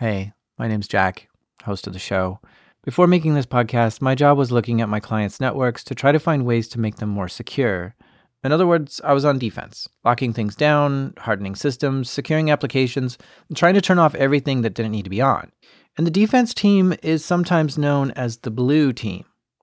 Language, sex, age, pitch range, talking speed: English, male, 40-59, 115-155 Hz, 205 wpm